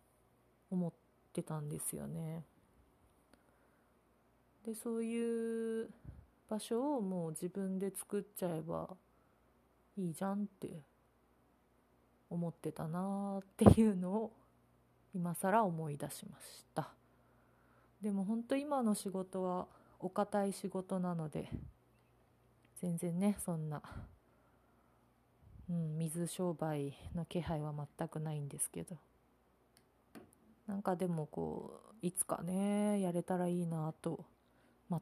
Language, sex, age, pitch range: Japanese, female, 30-49, 165-205 Hz